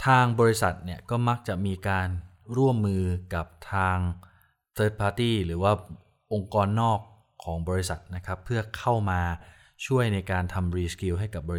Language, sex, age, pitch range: Thai, male, 20-39, 90-110 Hz